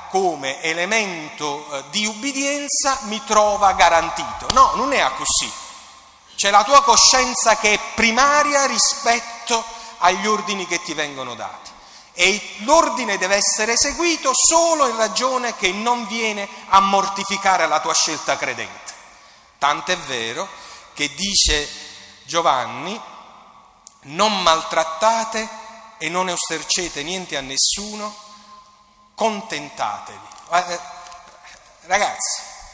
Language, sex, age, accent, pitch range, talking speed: Italian, male, 40-59, native, 165-230 Hz, 105 wpm